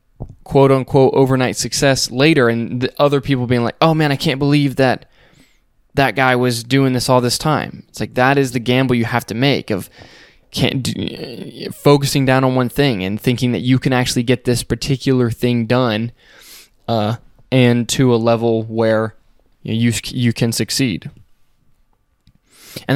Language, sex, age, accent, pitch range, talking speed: English, male, 10-29, American, 110-130 Hz, 175 wpm